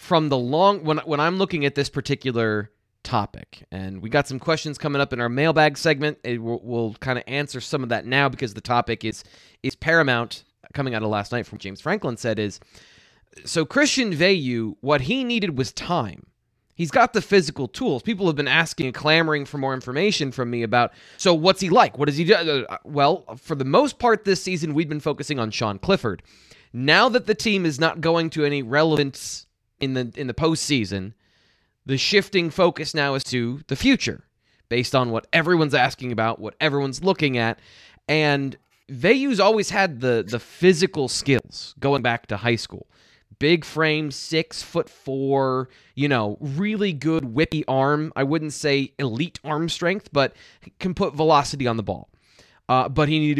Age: 20-39